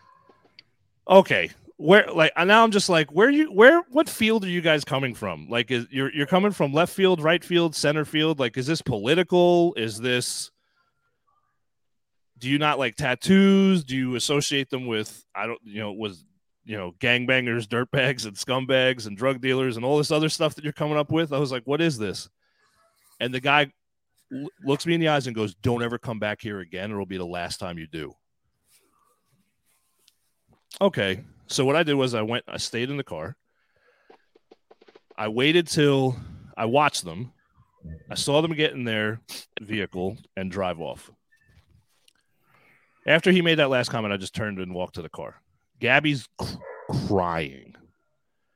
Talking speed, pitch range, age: 180 wpm, 110-155 Hz, 30-49